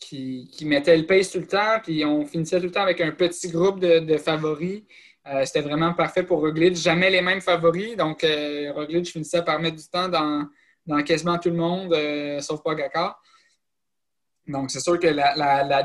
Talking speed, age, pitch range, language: 210 wpm, 20-39, 150-180 Hz, French